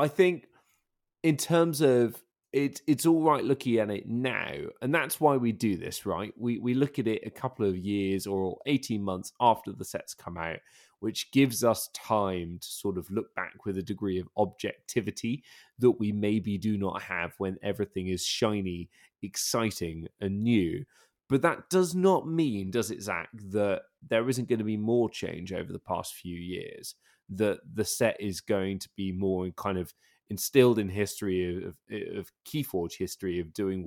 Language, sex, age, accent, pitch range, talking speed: English, male, 20-39, British, 95-135 Hz, 185 wpm